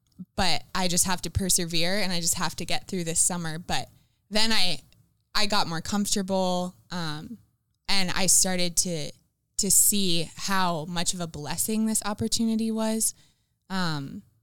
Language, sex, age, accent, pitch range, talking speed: English, female, 20-39, American, 160-185 Hz, 160 wpm